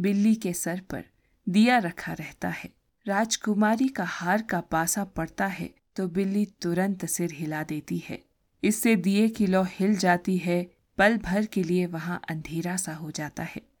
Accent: native